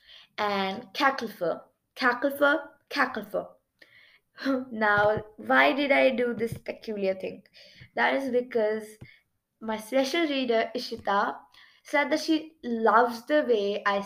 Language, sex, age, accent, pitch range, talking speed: English, female, 20-39, Indian, 210-265 Hz, 115 wpm